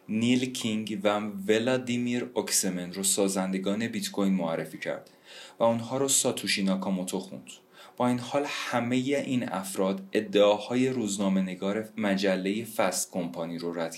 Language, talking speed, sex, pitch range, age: Persian, 125 wpm, male, 95-120 Hz, 30-49